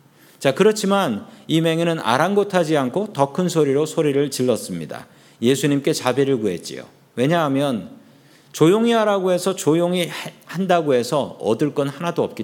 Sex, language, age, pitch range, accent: male, Korean, 40-59, 140-190 Hz, native